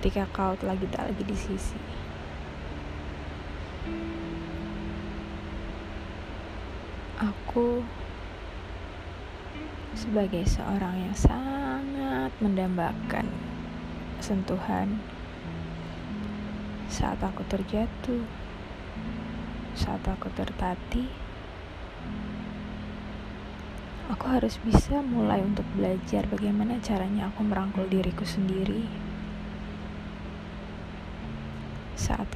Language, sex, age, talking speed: Indonesian, female, 20-39, 60 wpm